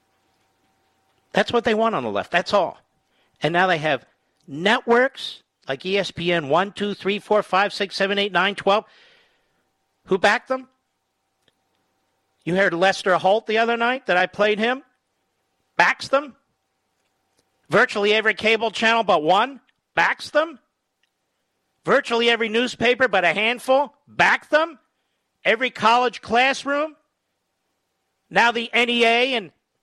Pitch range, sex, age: 180-245 Hz, male, 50-69